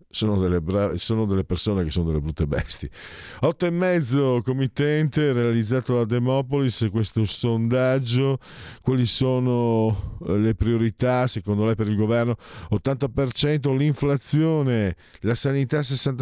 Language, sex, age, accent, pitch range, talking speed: Italian, male, 50-69, native, 105-140 Hz, 120 wpm